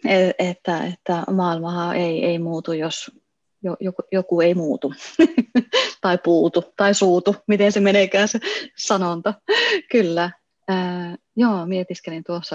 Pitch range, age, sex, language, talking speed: 165-200 Hz, 30-49, female, Finnish, 125 wpm